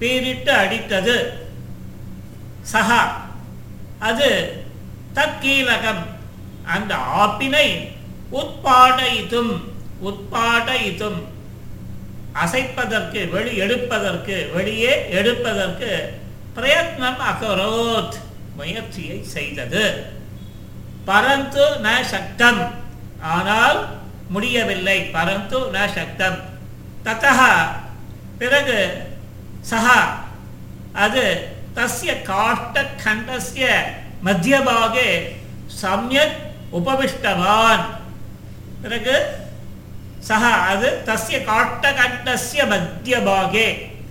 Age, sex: 50-69, male